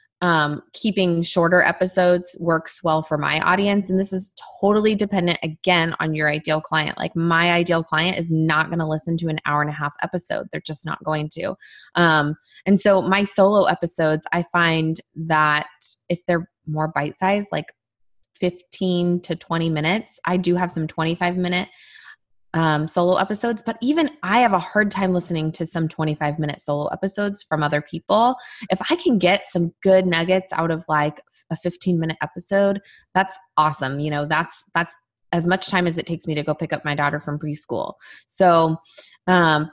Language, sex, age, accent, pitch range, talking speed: English, female, 20-39, American, 155-190 Hz, 185 wpm